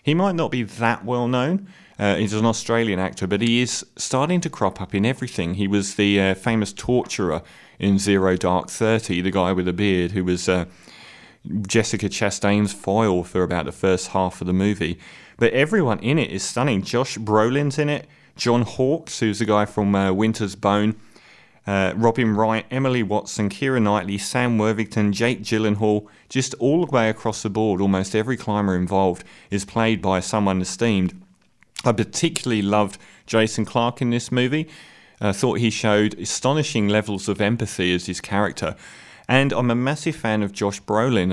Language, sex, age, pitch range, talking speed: English, male, 30-49, 95-120 Hz, 180 wpm